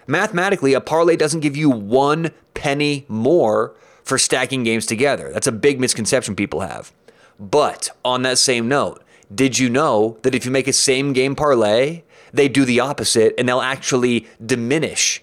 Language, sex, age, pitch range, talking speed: English, male, 30-49, 120-145 Hz, 170 wpm